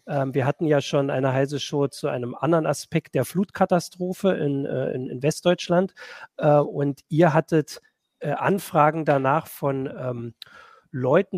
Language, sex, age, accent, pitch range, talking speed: German, male, 40-59, German, 130-160 Hz, 125 wpm